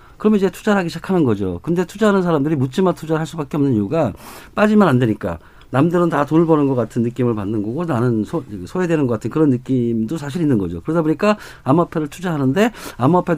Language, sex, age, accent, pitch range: Korean, male, 50-69, native, 115-170 Hz